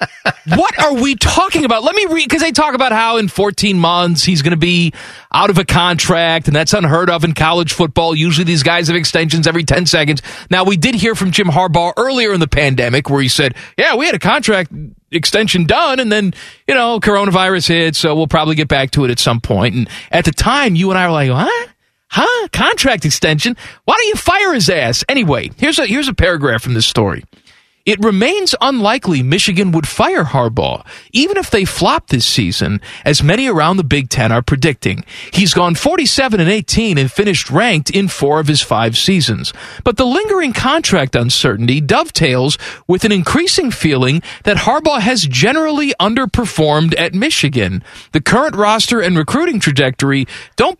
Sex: male